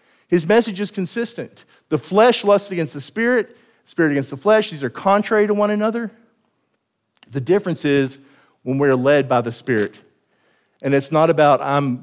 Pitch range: 120-165 Hz